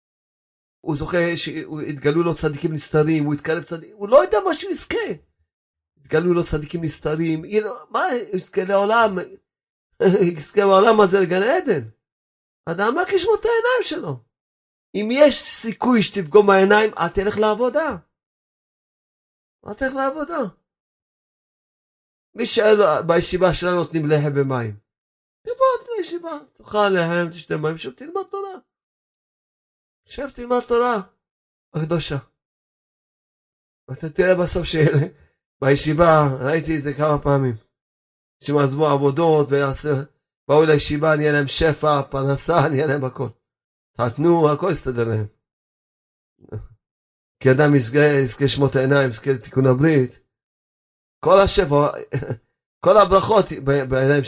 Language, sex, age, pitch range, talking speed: Hebrew, male, 40-59, 135-200 Hz, 115 wpm